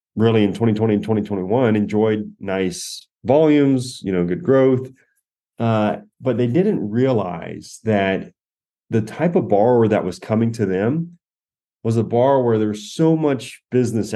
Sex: male